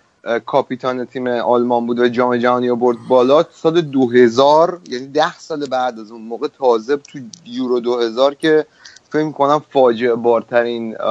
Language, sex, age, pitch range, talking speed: Persian, male, 30-49, 120-145 Hz, 145 wpm